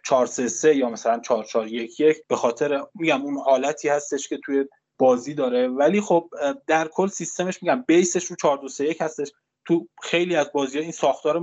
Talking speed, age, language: 185 wpm, 20-39, Persian